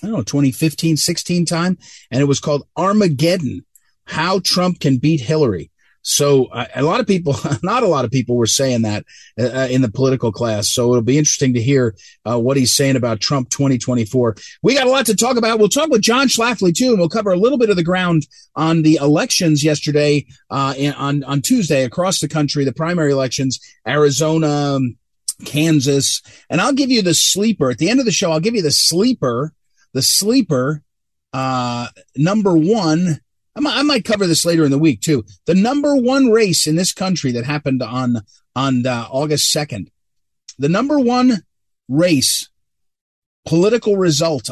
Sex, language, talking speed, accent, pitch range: male, English, 185 wpm, American, 130-185 Hz